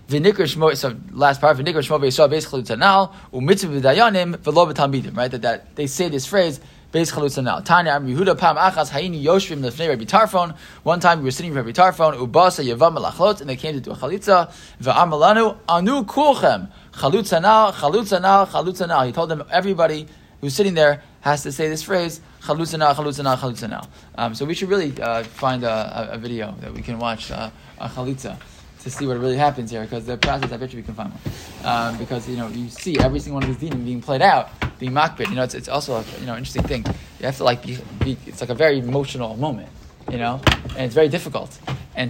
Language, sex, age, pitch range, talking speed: English, male, 20-39, 125-165 Hz, 155 wpm